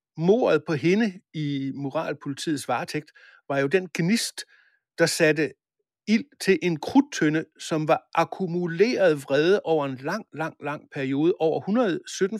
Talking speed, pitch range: 135 wpm, 145-190 Hz